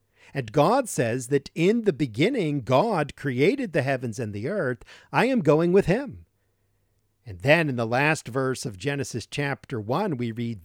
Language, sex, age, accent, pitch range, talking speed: English, male, 50-69, American, 105-165 Hz, 175 wpm